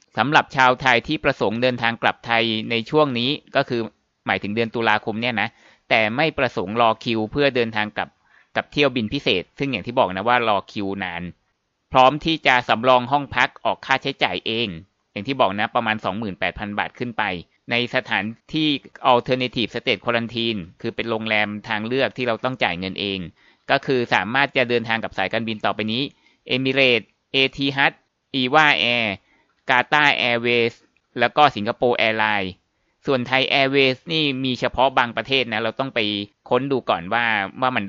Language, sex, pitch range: Thai, male, 110-135 Hz